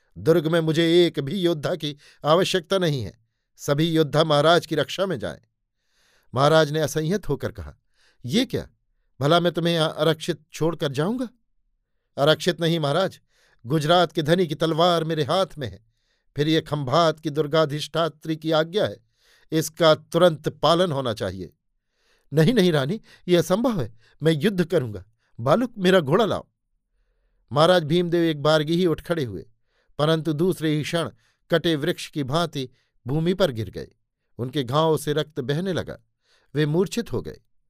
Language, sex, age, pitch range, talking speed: Hindi, male, 50-69, 130-170 Hz, 160 wpm